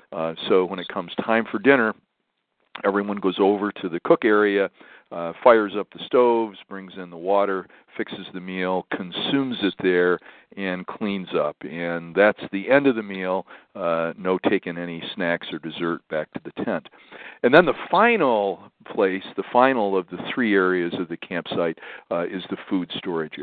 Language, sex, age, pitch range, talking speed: English, male, 50-69, 85-100 Hz, 180 wpm